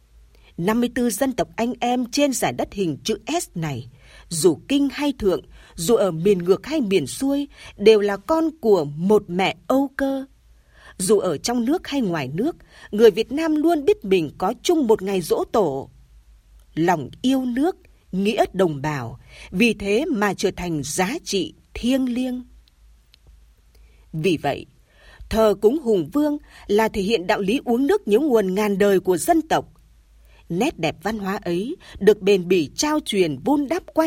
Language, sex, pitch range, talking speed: Vietnamese, female, 180-270 Hz, 175 wpm